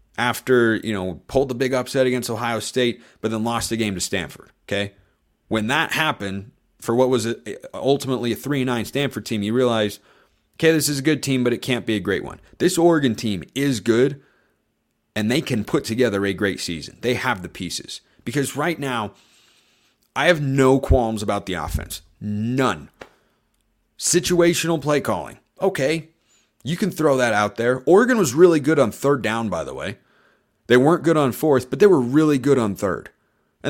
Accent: American